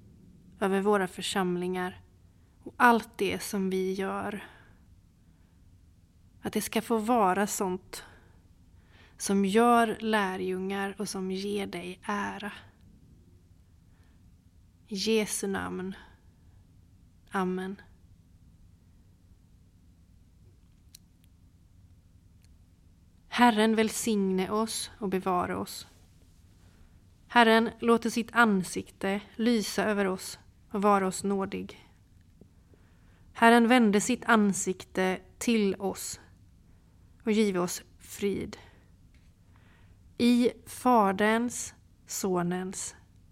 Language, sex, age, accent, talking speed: Swedish, female, 30-49, native, 80 wpm